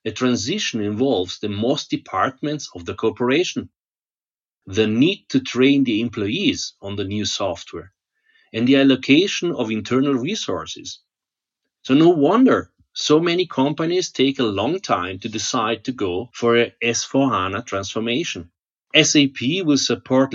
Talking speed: 135 wpm